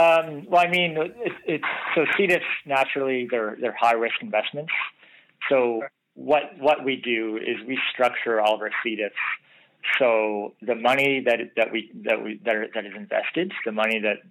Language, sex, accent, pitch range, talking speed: English, male, American, 105-130 Hz, 175 wpm